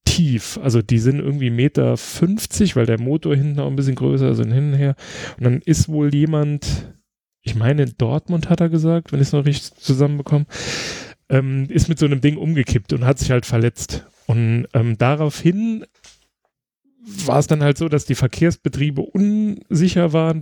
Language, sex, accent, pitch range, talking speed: German, male, German, 130-160 Hz, 175 wpm